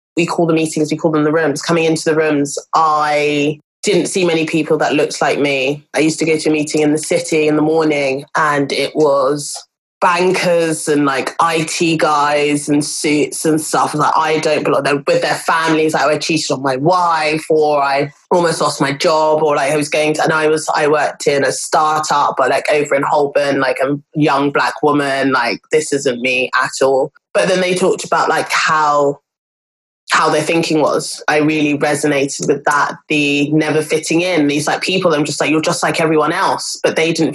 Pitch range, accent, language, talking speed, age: 145-160 Hz, British, English, 215 wpm, 20-39